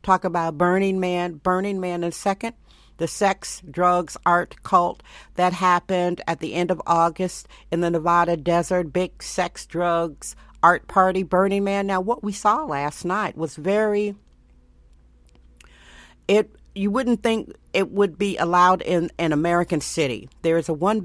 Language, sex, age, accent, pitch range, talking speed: English, female, 50-69, American, 155-195 Hz, 160 wpm